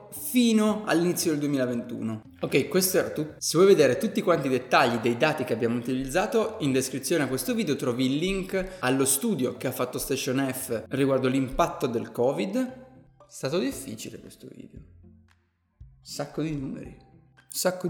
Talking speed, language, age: 160 wpm, Italian, 20-39